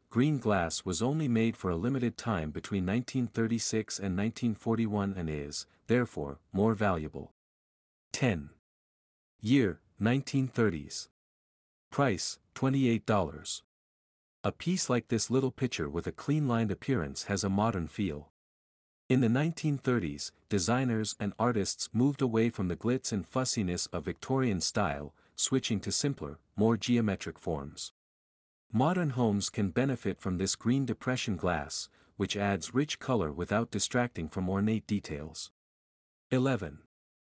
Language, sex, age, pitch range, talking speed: English, male, 50-69, 90-125 Hz, 125 wpm